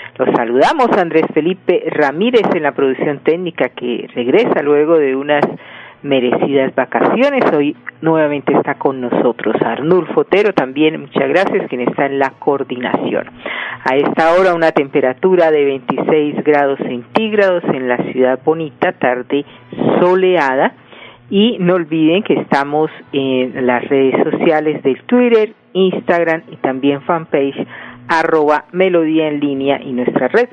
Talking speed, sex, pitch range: 135 wpm, female, 135-170 Hz